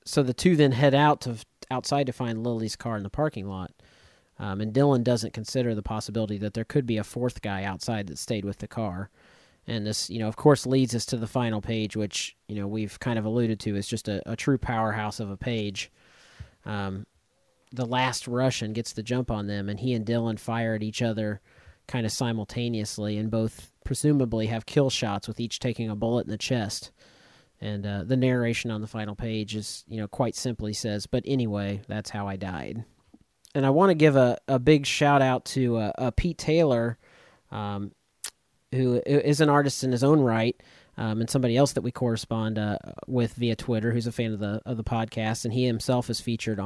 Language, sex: English, male